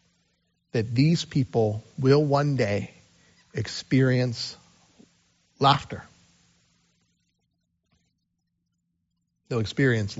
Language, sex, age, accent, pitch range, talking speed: English, male, 40-59, American, 120-170 Hz, 60 wpm